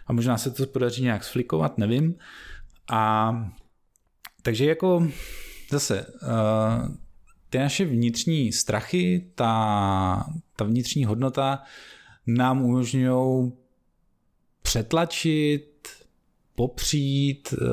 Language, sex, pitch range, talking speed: Czech, male, 100-125 Hz, 80 wpm